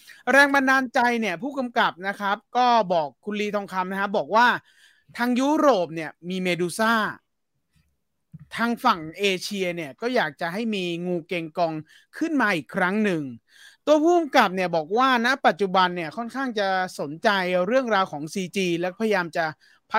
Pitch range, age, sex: 175-230 Hz, 30-49, male